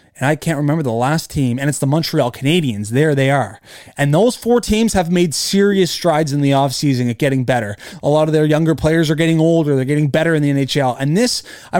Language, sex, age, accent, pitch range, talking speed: English, male, 20-39, American, 130-165 Hz, 240 wpm